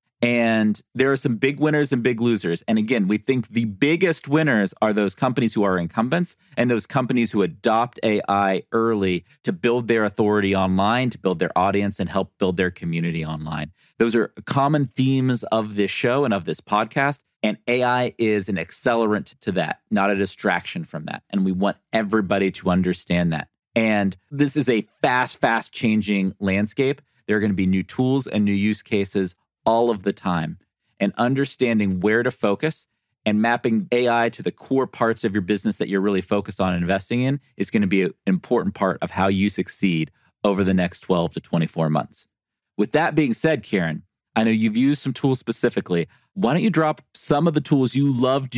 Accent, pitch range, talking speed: American, 100-130 Hz, 195 wpm